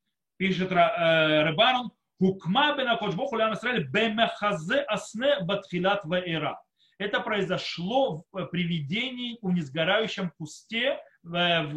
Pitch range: 160-220 Hz